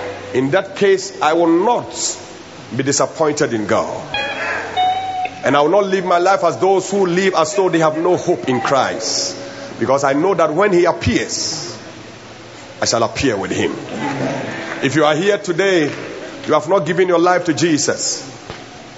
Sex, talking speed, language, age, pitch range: male, 170 wpm, English, 40-59, 140-170 Hz